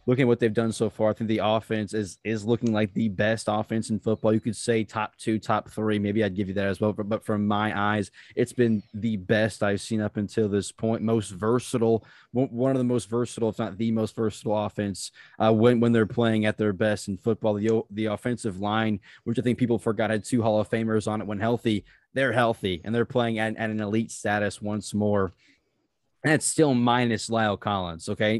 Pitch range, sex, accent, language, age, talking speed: 105-115 Hz, male, American, English, 20-39, 230 wpm